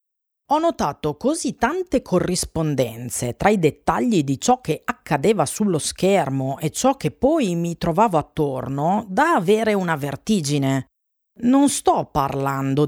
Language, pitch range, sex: Italian, 140-210 Hz, female